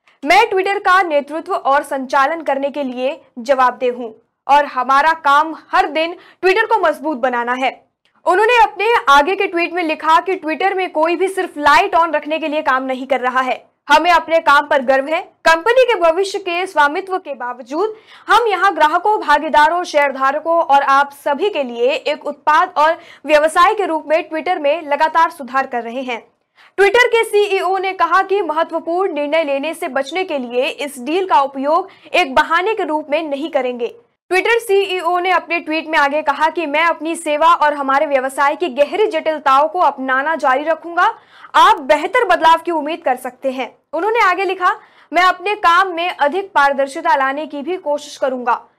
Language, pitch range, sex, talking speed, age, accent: Hindi, 280-365 Hz, female, 155 wpm, 20-39, native